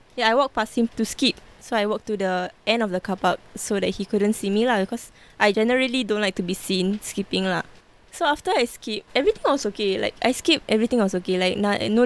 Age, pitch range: 20-39, 200-235 Hz